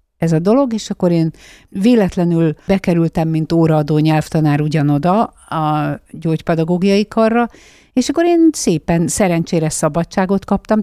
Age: 50-69